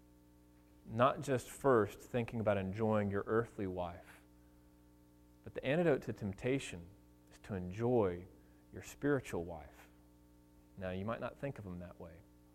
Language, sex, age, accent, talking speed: English, male, 30-49, American, 140 wpm